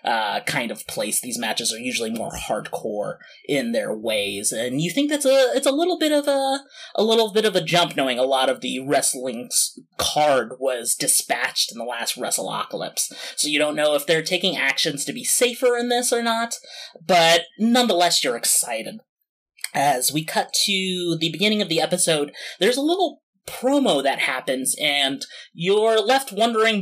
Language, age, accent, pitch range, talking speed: English, 20-39, American, 140-230 Hz, 180 wpm